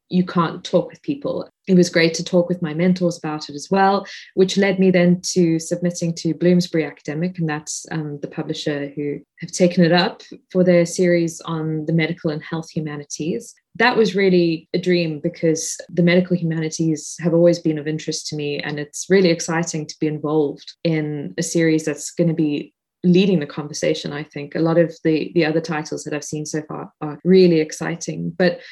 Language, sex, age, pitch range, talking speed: English, female, 20-39, 155-180 Hz, 200 wpm